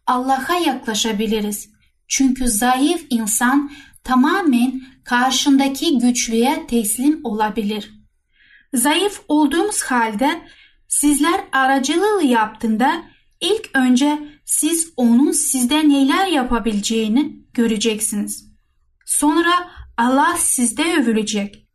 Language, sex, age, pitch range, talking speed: Turkish, female, 10-29, 235-295 Hz, 75 wpm